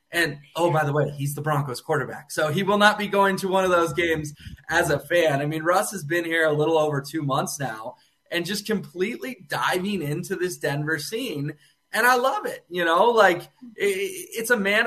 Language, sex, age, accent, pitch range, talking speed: English, male, 20-39, American, 150-195 Hz, 220 wpm